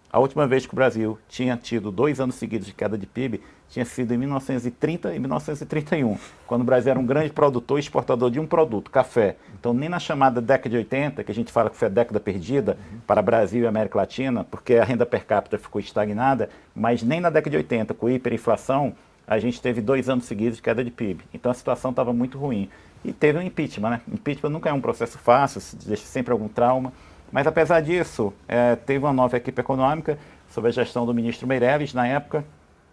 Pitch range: 115-135 Hz